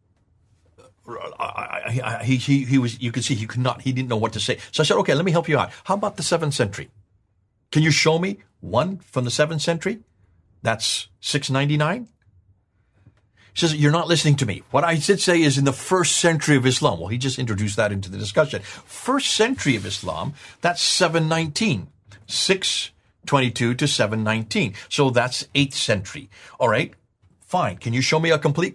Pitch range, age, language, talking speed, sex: 100-160 Hz, 50-69, English, 185 wpm, male